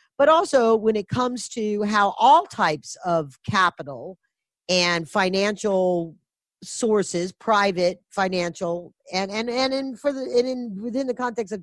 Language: English